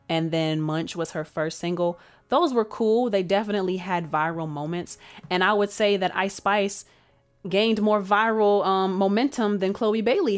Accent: American